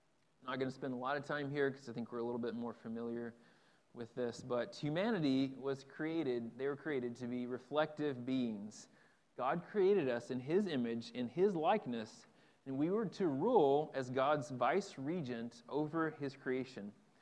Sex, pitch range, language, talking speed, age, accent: male, 120-150 Hz, English, 180 wpm, 30-49, American